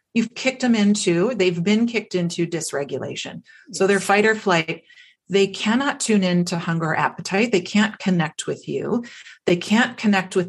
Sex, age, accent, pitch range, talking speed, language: female, 40-59, American, 170-210 Hz, 170 wpm, English